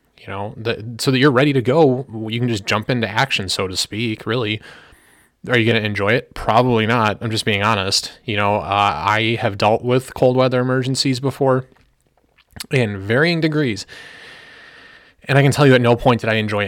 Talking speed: 200 wpm